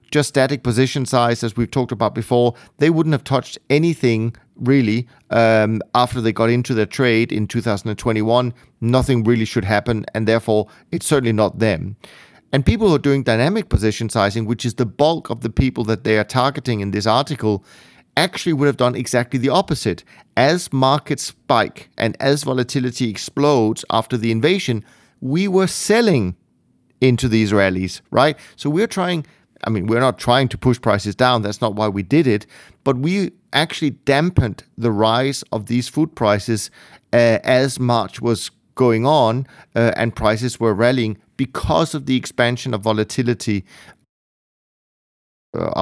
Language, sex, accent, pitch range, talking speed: English, male, German, 110-135 Hz, 165 wpm